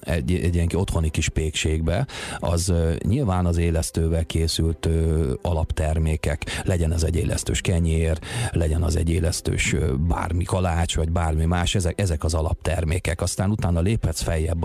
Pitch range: 80-95 Hz